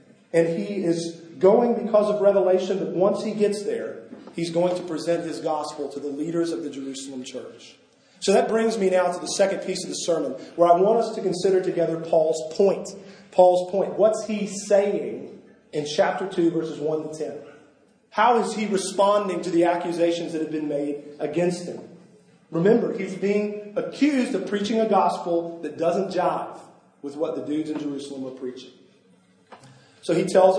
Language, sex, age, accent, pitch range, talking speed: English, male, 40-59, American, 165-200 Hz, 180 wpm